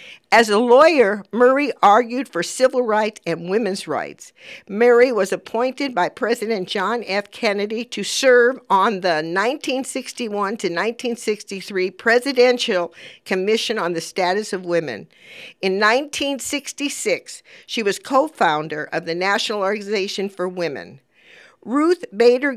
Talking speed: 120 wpm